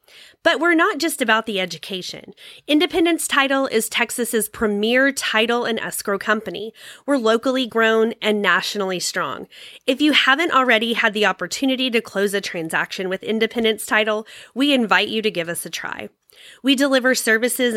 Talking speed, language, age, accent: 160 wpm, English, 20-39, American